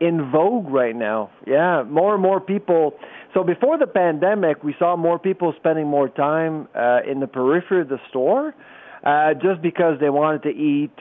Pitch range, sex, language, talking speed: 140-175 Hz, male, English, 185 wpm